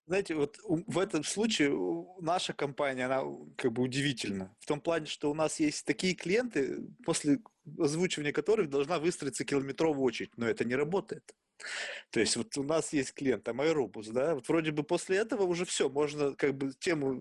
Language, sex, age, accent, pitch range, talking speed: Russian, male, 20-39, native, 130-180 Hz, 180 wpm